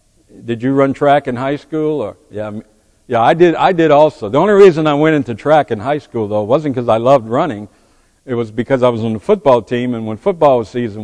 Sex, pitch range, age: male, 105-135 Hz, 60-79